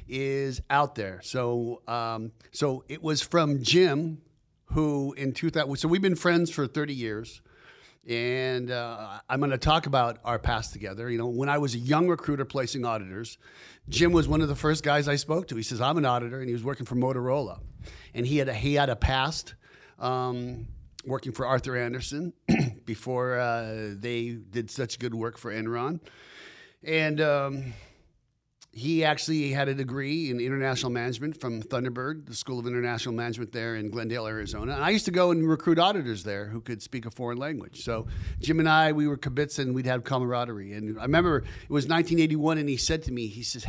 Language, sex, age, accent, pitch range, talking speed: English, male, 50-69, American, 120-150 Hz, 195 wpm